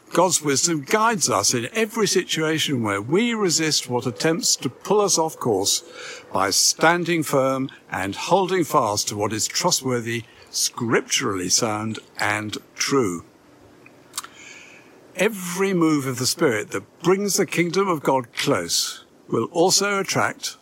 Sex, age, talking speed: male, 60-79, 135 wpm